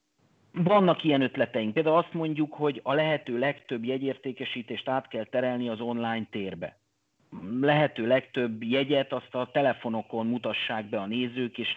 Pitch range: 115-135 Hz